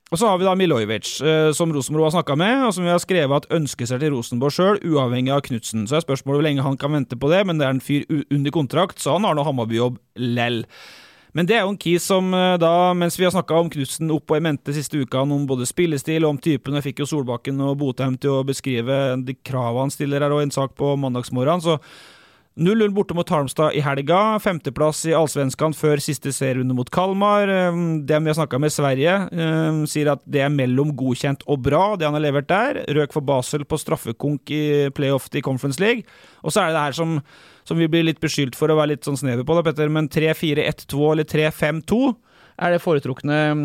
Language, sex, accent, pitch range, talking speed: English, male, Swedish, 140-165 Hz, 230 wpm